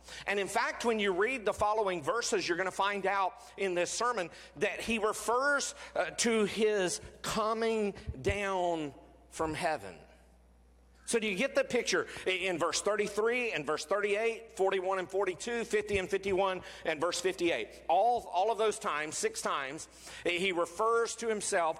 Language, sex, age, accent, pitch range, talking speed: English, male, 50-69, American, 125-210 Hz, 160 wpm